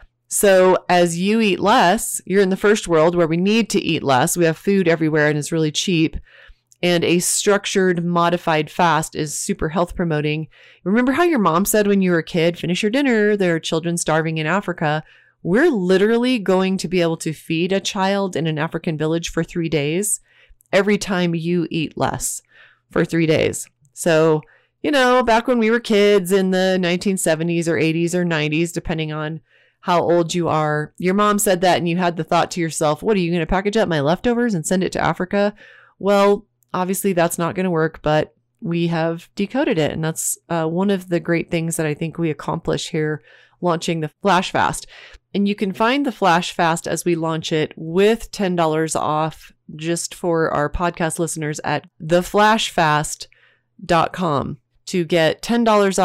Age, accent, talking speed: 30-49, American, 190 wpm